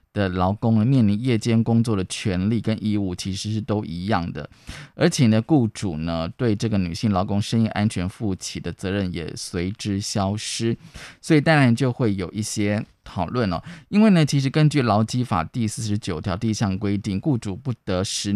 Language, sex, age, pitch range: Chinese, male, 20-39, 95-120 Hz